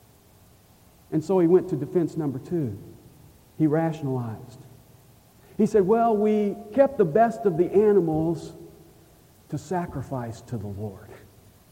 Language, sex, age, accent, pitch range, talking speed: English, male, 50-69, American, 125-175 Hz, 130 wpm